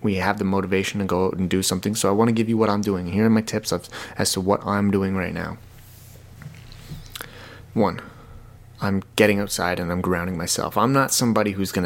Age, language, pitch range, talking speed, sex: 20-39, English, 100-115 Hz, 220 wpm, male